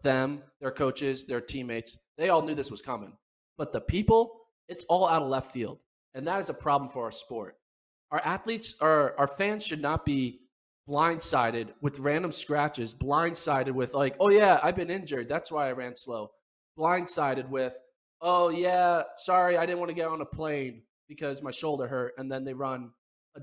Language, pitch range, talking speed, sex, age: English, 135-175 Hz, 190 wpm, male, 20-39